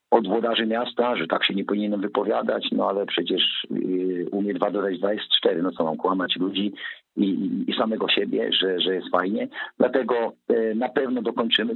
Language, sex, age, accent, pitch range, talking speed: Polish, male, 50-69, native, 105-125 Hz, 170 wpm